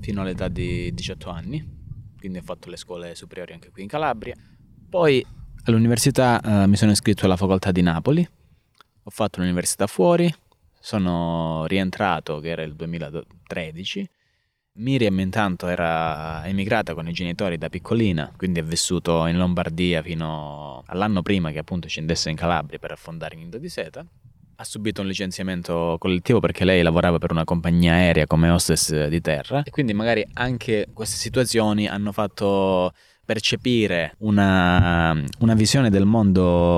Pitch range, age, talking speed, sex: 85-105 Hz, 20-39, 150 wpm, male